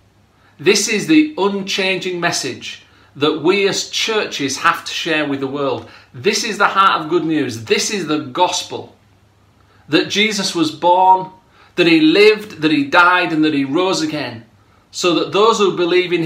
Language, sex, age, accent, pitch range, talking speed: English, male, 40-59, British, 115-180 Hz, 175 wpm